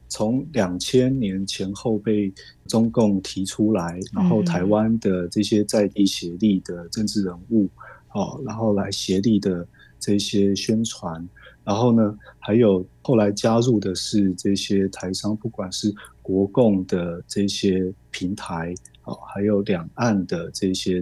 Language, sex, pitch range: Chinese, male, 95-115 Hz